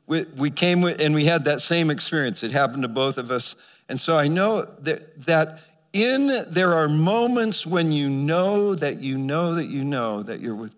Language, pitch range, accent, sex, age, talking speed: English, 140-175 Hz, American, male, 60-79, 195 wpm